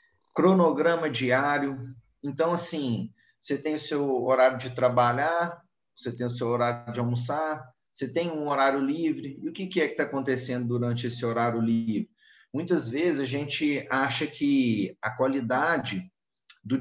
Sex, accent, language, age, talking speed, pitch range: male, Brazilian, Portuguese, 40-59, 155 wpm, 125-165 Hz